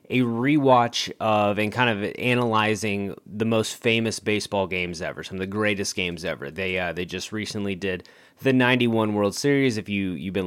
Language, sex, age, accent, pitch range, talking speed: English, male, 20-39, American, 100-120 Hz, 190 wpm